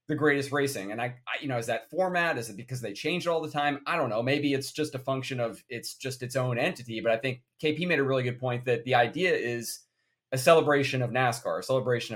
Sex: male